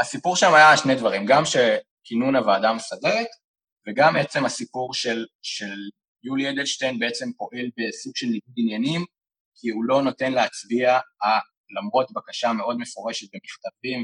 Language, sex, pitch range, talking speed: Hebrew, male, 115-185 Hz, 135 wpm